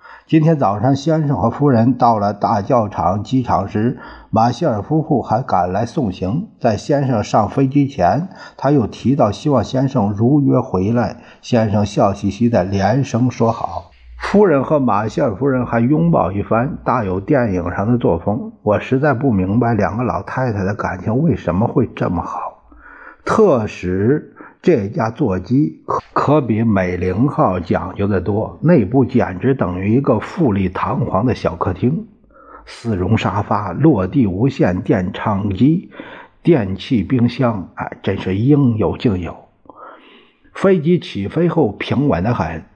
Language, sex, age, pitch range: Chinese, male, 50-69, 100-135 Hz